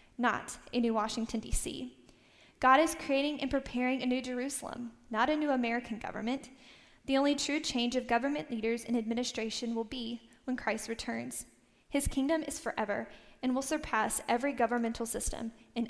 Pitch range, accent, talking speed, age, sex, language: 230-260 Hz, American, 160 wpm, 10-29, female, English